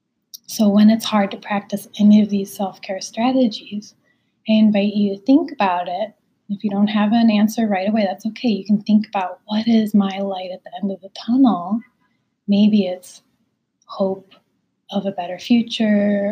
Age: 20-39